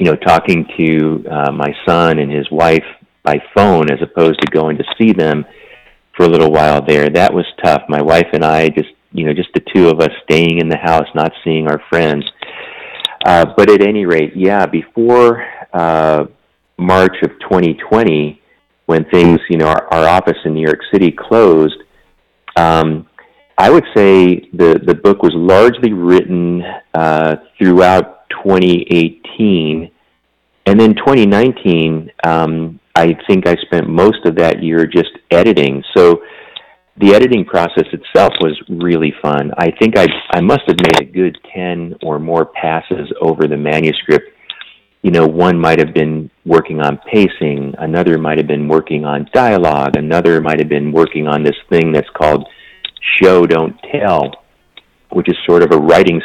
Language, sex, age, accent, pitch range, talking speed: English, male, 40-59, American, 75-85 Hz, 165 wpm